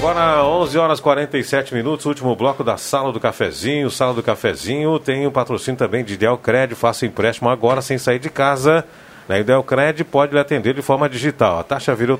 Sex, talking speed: male, 200 wpm